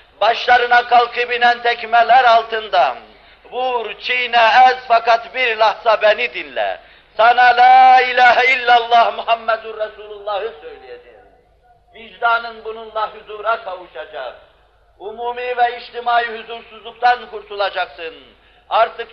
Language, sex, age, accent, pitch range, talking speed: Turkish, male, 50-69, native, 220-240 Hz, 90 wpm